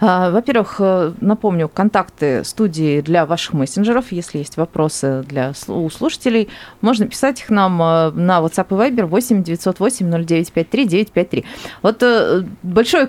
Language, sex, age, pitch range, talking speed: Russian, female, 30-49, 165-220 Hz, 105 wpm